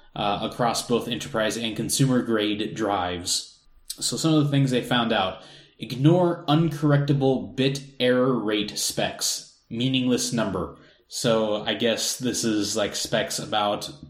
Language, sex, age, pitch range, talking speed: English, male, 20-39, 110-140 Hz, 130 wpm